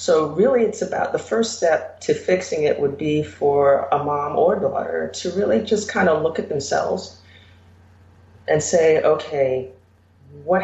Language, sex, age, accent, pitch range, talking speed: English, female, 40-59, American, 130-185 Hz, 165 wpm